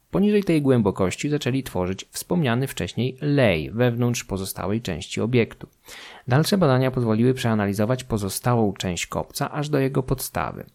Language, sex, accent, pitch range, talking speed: Polish, male, native, 95-130 Hz, 130 wpm